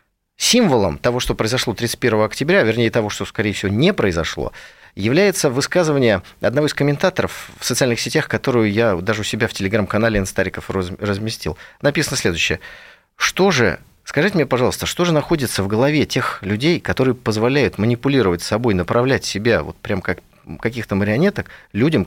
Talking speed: 150 wpm